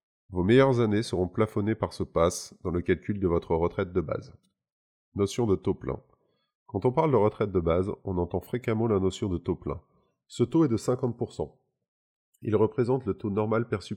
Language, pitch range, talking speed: French, 90-120 Hz, 200 wpm